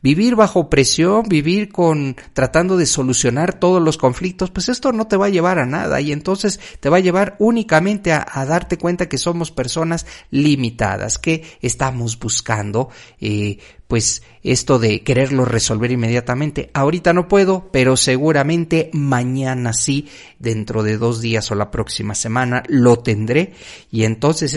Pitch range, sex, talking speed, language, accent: 115-160 Hz, male, 155 wpm, Spanish, Mexican